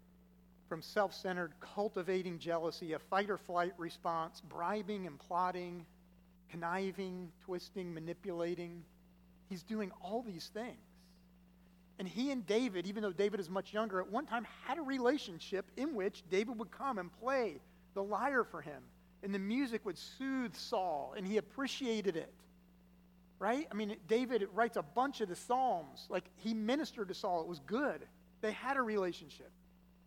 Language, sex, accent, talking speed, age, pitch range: English, male, American, 155 wpm, 50-69, 150-200 Hz